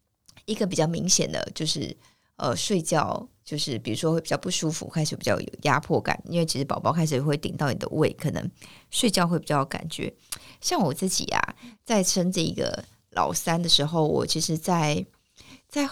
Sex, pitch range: female, 150-190 Hz